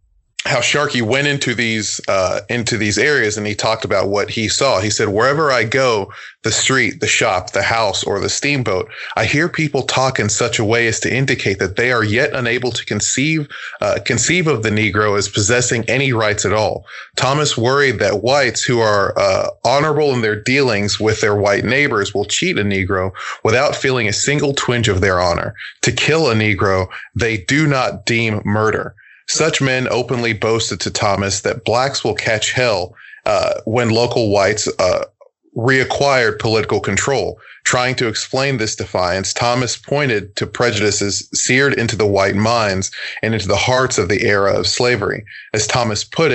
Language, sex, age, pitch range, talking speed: English, male, 20-39, 105-130 Hz, 180 wpm